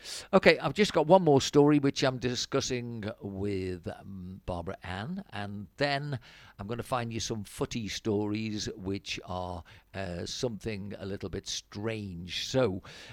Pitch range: 105-130 Hz